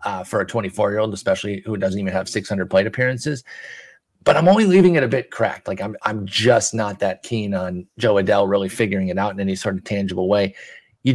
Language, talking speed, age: English, 220 wpm, 30-49